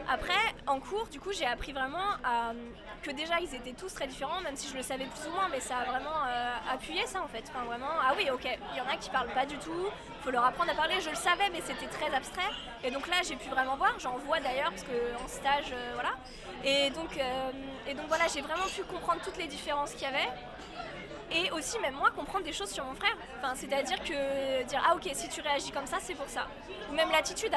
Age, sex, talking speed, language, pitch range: 20-39, female, 260 wpm, French, 265-340 Hz